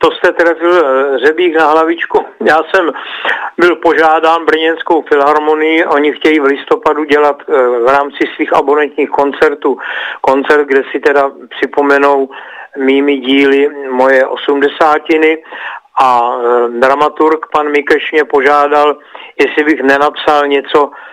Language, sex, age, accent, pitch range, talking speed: Czech, male, 50-69, native, 135-150 Hz, 115 wpm